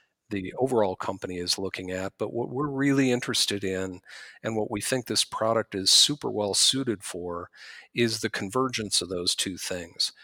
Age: 50-69